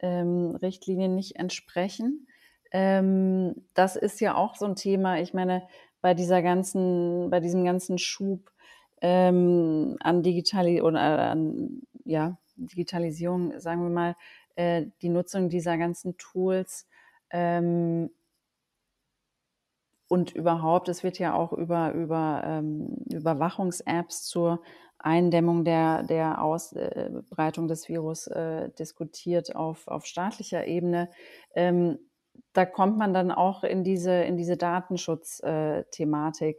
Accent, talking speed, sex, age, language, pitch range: German, 100 wpm, female, 30-49, German, 160-185 Hz